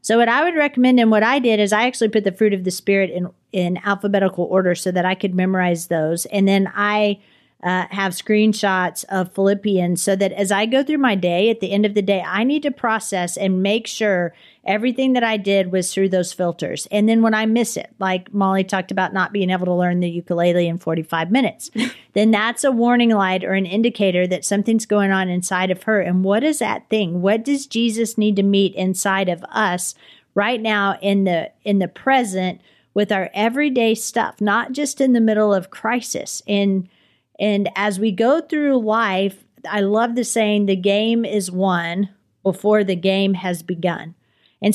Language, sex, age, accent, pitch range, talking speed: English, female, 40-59, American, 190-230 Hz, 205 wpm